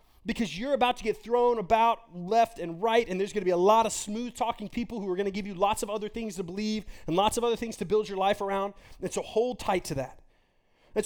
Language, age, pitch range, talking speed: English, 30-49, 160-225 Hz, 270 wpm